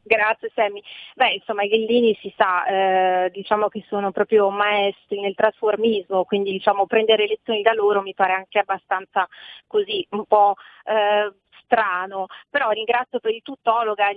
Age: 30-49